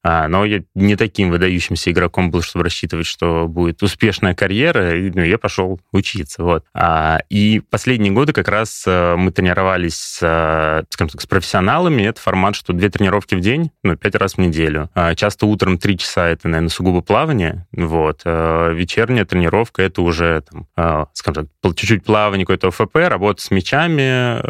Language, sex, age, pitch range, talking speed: Russian, male, 20-39, 85-105 Hz, 165 wpm